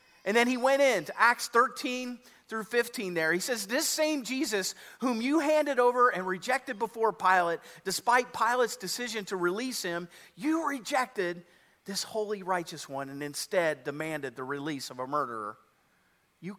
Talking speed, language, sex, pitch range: 165 wpm, English, male, 170-235 Hz